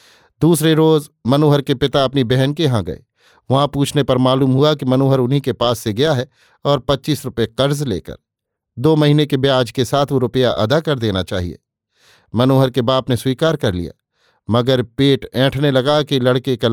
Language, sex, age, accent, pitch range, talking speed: Hindi, male, 50-69, native, 120-145 Hz, 195 wpm